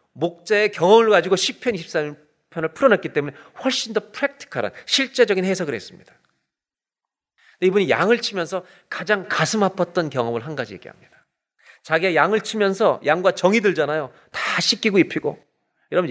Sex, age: male, 40-59